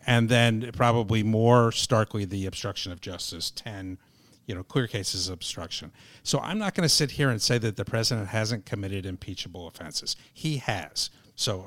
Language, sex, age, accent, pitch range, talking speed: English, male, 50-69, American, 100-130 Hz, 180 wpm